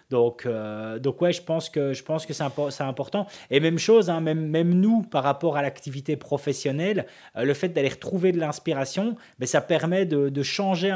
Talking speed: 215 wpm